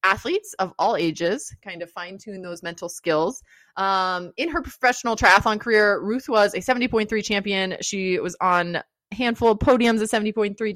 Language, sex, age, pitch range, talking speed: English, female, 20-39, 170-210 Hz, 175 wpm